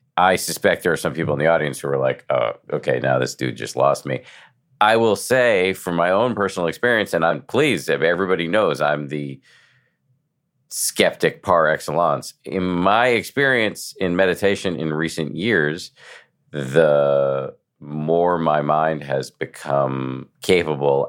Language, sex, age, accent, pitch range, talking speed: English, male, 50-69, American, 70-95 Hz, 155 wpm